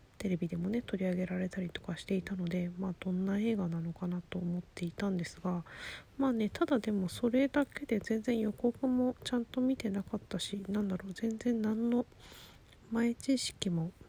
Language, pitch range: Japanese, 175-230 Hz